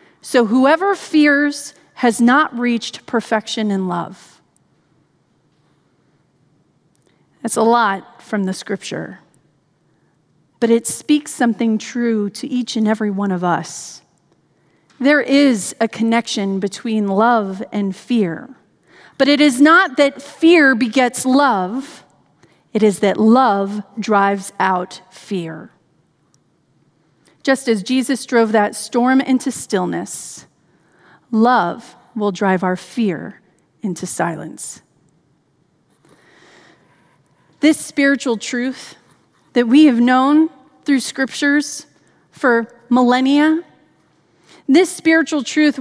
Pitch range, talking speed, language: 195-275 Hz, 105 wpm, English